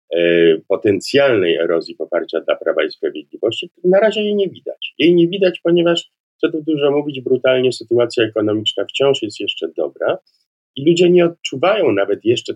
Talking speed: 160 wpm